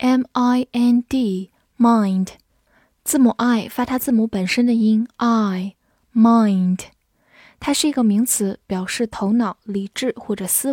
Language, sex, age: Chinese, female, 10-29